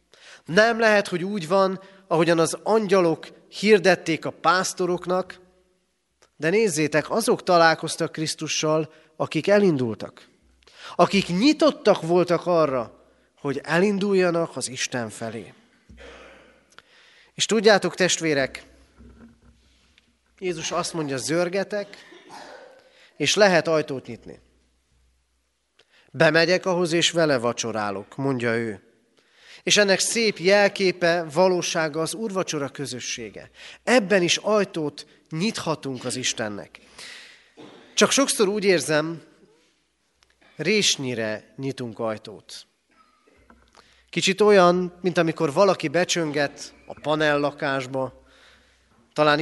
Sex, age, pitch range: male, 30-49, 135-185 Hz